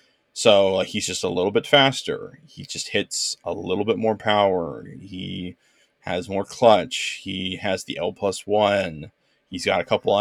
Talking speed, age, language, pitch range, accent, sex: 170 wpm, 20-39, English, 95-120 Hz, American, male